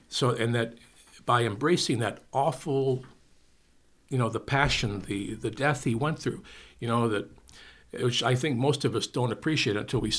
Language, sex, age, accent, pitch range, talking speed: English, male, 60-79, American, 110-130 Hz, 175 wpm